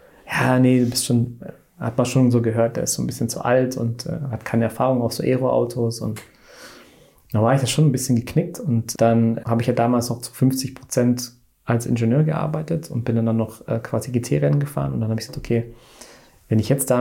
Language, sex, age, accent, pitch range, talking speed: German, male, 20-39, German, 115-130 Hz, 230 wpm